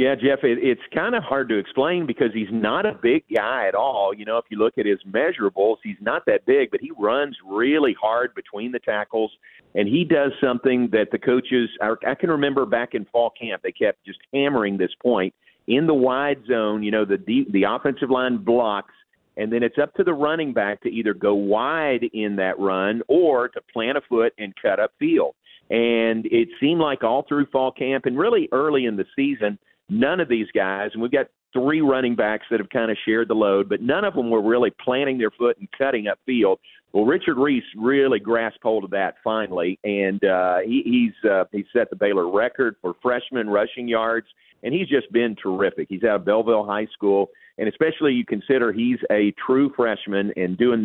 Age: 40-59